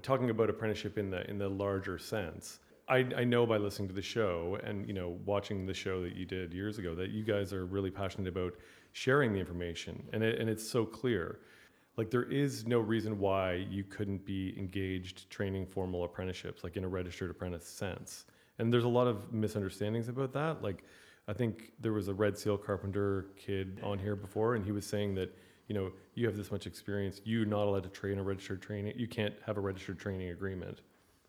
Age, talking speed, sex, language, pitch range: 30-49, 215 wpm, male, English, 95-110 Hz